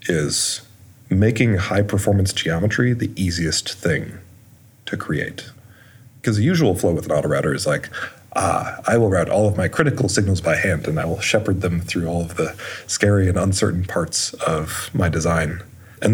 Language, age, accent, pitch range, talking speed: English, 30-49, American, 95-115 Hz, 175 wpm